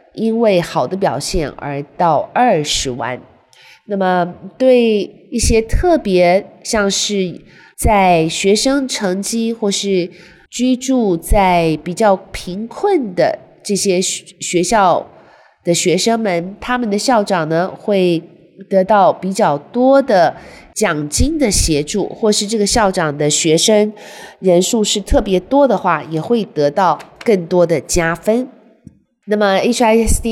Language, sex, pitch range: Chinese, female, 170-230 Hz